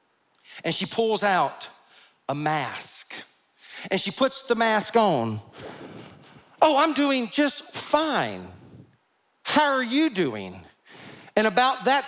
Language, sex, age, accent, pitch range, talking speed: English, male, 50-69, American, 175-275 Hz, 120 wpm